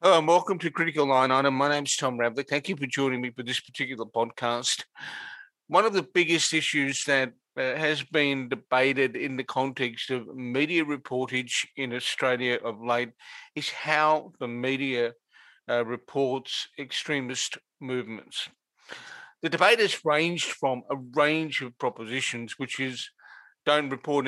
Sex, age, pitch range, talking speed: male, 50-69, 130-150 Hz, 150 wpm